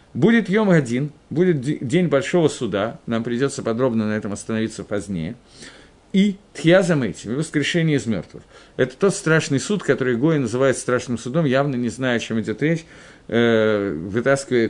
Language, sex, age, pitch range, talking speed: Russian, male, 50-69, 120-175 Hz, 155 wpm